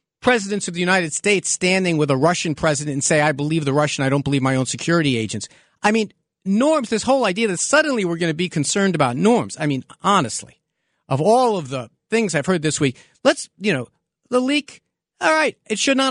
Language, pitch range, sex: English, 135-195 Hz, male